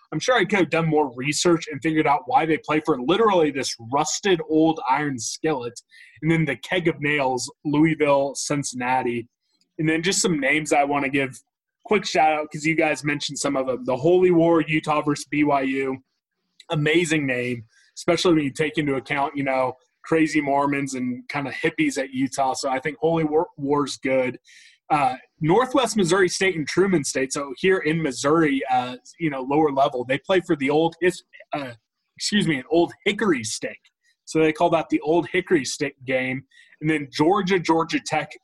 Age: 20-39